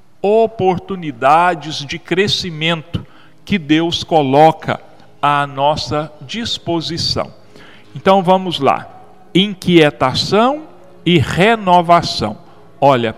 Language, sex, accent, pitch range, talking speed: Portuguese, male, Brazilian, 140-185 Hz, 75 wpm